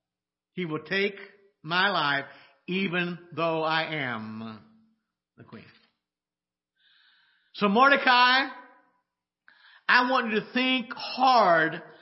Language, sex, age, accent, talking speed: English, male, 50-69, American, 95 wpm